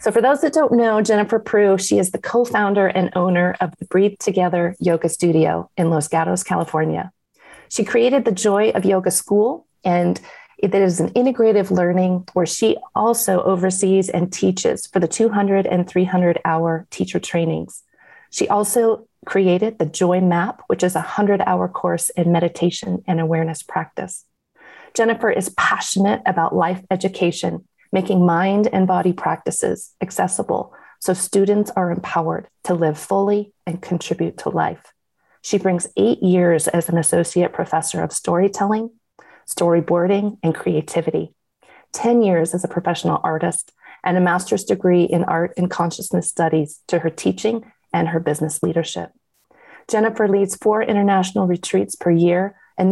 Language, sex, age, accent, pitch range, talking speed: English, female, 40-59, American, 175-205 Hz, 150 wpm